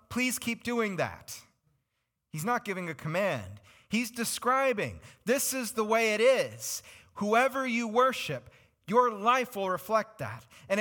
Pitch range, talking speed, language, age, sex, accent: 130-215 Hz, 145 wpm, English, 30-49, male, American